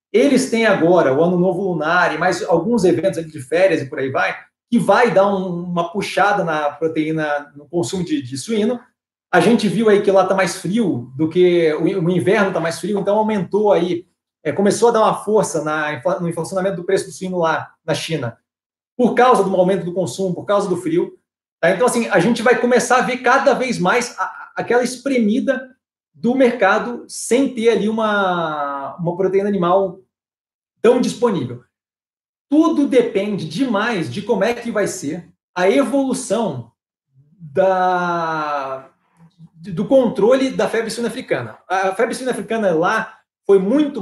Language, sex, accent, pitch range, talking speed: Portuguese, male, Brazilian, 170-230 Hz, 165 wpm